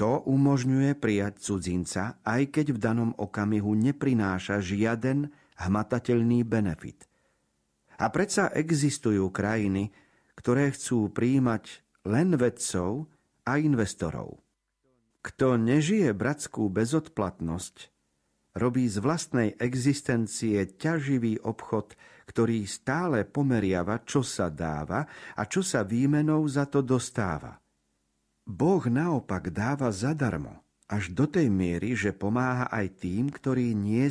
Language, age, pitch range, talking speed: Slovak, 50-69, 90-130 Hz, 105 wpm